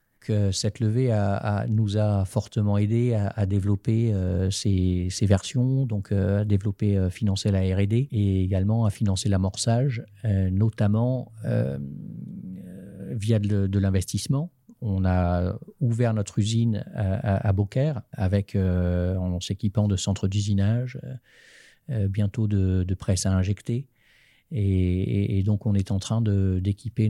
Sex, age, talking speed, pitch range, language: male, 40-59, 145 wpm, 95-115 Hz, French